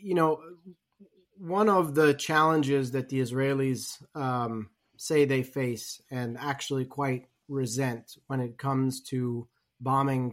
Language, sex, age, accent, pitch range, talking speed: English, male, 30-49, American, 125-145 Hz, 130 wpm